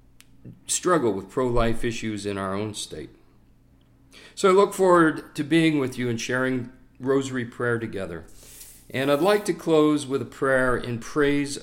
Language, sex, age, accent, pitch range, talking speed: English, male, 50-69, American, 115-155 Hz, 160 wpm